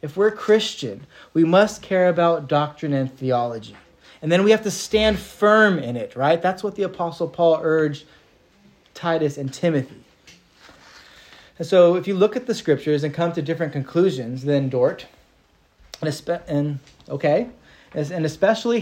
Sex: male